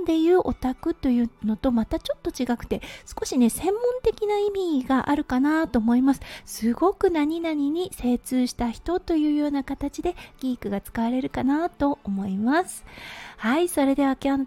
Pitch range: 230-305 Hz